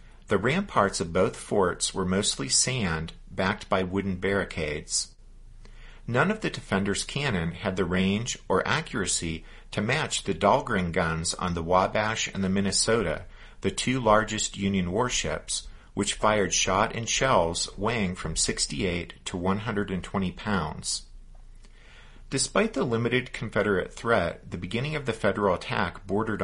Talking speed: 140 wpm